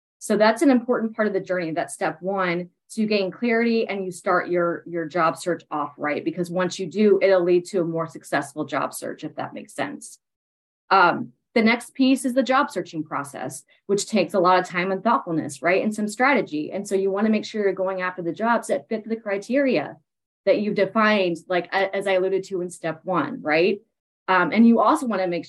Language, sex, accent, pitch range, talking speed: English, female, American, 170-210 Hz, 225 wpm